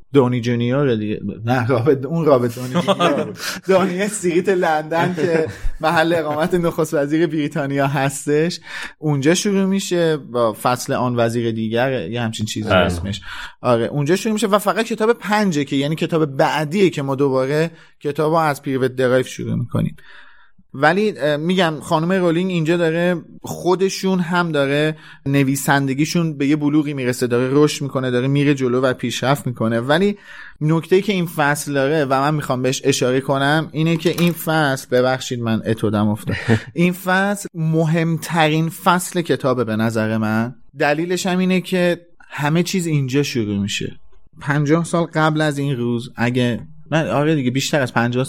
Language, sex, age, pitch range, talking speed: Persian, male, 30-49, 130-170 Hz, 155 wpm